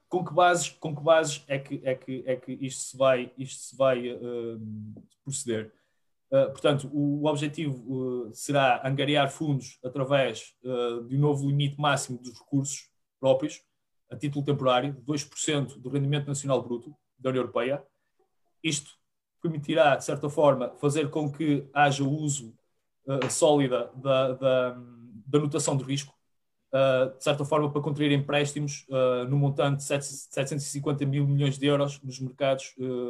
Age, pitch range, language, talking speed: 20-39, 130-150 Hz, Portuguese, 160 wpm